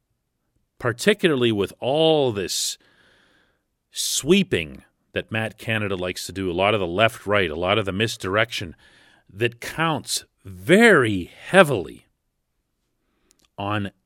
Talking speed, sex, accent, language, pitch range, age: 110 wpm, male, American, English, 95-135 Hz, 40-59